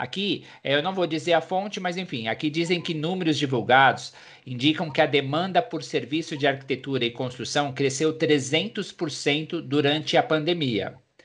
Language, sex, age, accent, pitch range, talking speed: Portuguese, male, 50-69, Brazilian, 140-170 Hz, 155 wpm